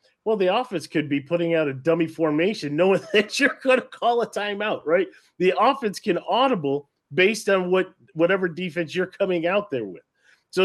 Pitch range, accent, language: 160-210 Hz, American, English